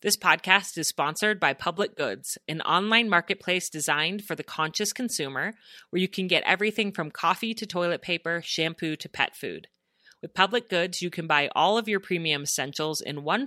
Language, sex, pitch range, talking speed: English, female, 155-200 Hz, 185 wpm